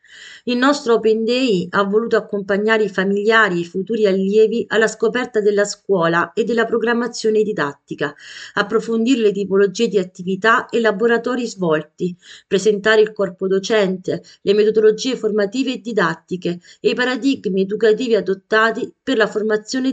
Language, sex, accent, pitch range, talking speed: Italian, female, native, 185-225 Hz, 140 wpm